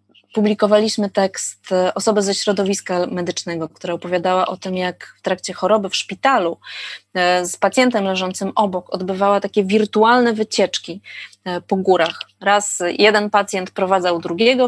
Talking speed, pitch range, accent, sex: 125 wpm, 180-210 Hz, native, female